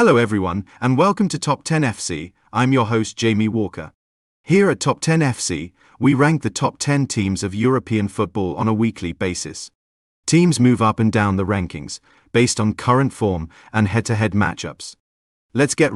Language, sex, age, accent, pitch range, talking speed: English, male, 40-59, British, 95-130 Hz, 175 wpm